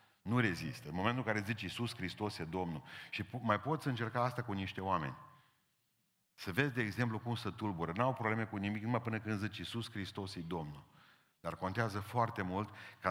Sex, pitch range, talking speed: male, 90-115 Hz, 205 wpm